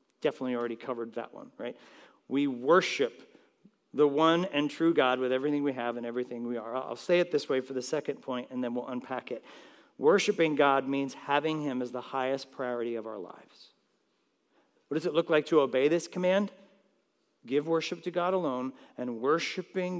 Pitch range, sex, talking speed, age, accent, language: 125-165 Hz, male, 190 wpm, 50-69, American, English